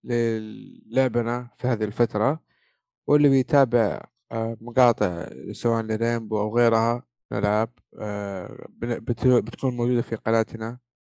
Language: Arabic